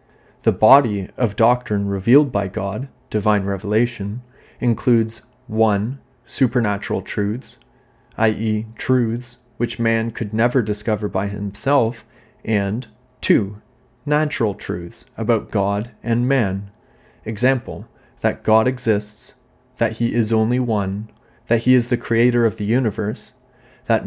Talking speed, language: 120 wpm, English